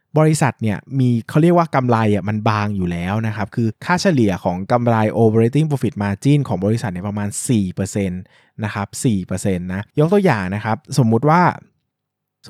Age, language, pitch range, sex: 20-39, Thai, 100-135 Hz, male